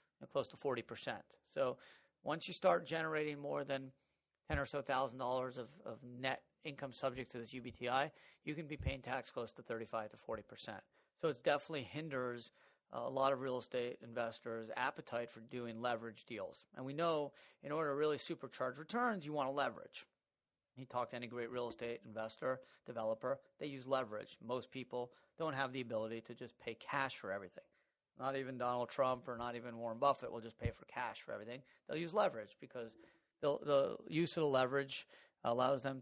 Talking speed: 190 wpm